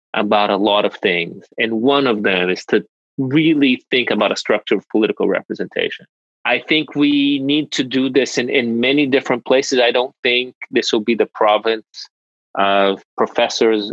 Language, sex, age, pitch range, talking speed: English, male, 30-49, 110-145 Hz, 175 wpm